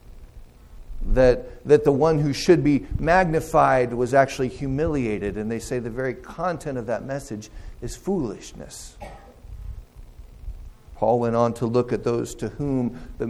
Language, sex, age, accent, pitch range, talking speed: English, male, 50-69, American, 105-135 Hz, 145 wpm